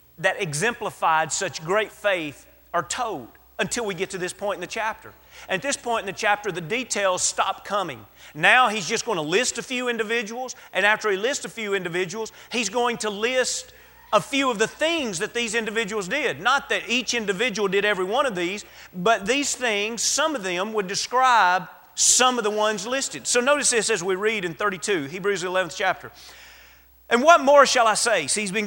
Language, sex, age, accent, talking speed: English, male, 40-59, American, 205 wpm